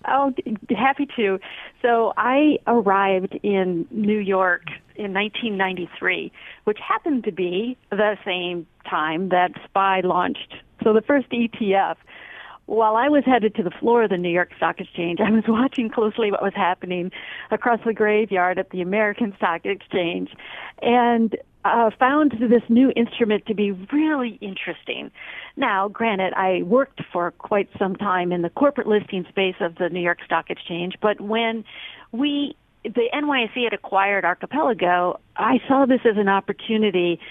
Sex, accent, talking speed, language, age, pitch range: female, American, 155 wpm, English, 50-69, 190-240 Hz